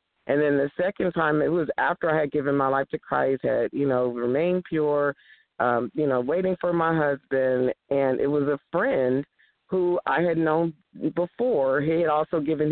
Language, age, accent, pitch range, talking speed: English, 40-59, American, 140-175 Hz, 195 wpm